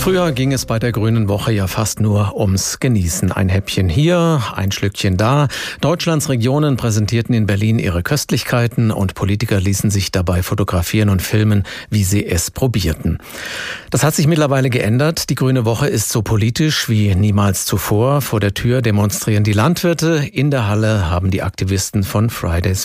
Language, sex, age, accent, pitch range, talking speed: German, male, 50-69, German, 100-135 Hz, 170 wpm